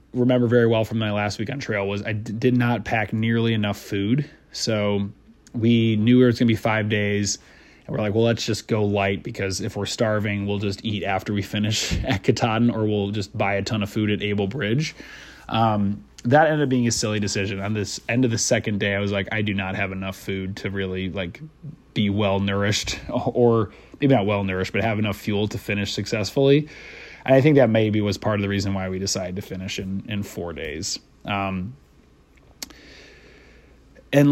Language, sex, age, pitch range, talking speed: English, male, 20-39, 100-120 Hz, 210 wpm